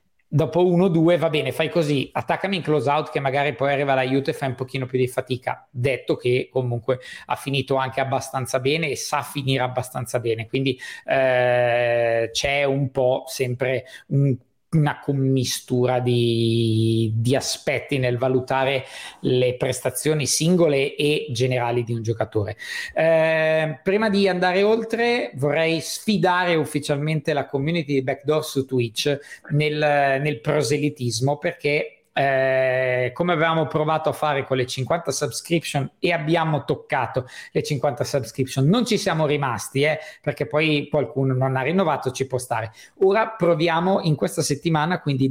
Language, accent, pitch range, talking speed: Italian, native, 130-160 Hz, 150 wpm